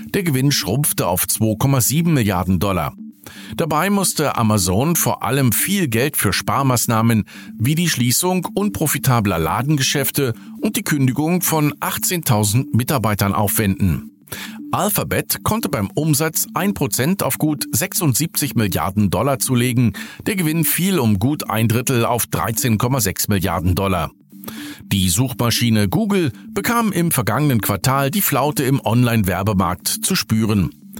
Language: German